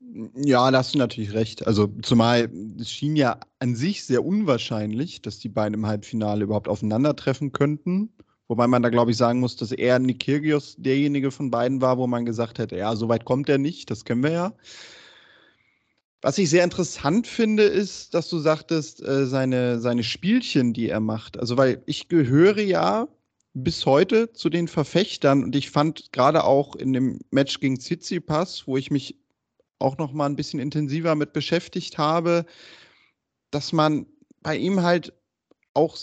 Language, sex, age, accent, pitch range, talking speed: German, male, 30-49, German, 125-165 Hz, 175 wpm